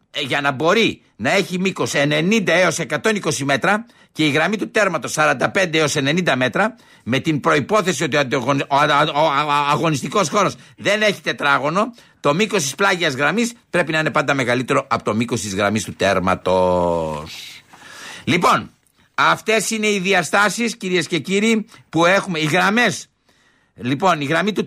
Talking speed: 150 wpm